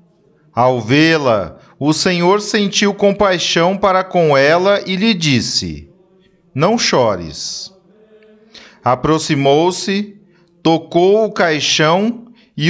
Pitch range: 150-200 Hz